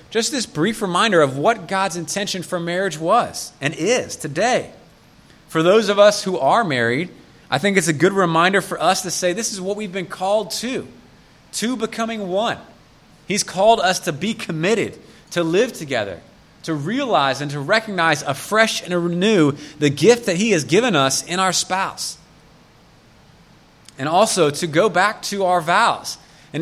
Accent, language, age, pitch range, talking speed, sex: American, English, 30-49, 165-210 Hz, 175 wpm, male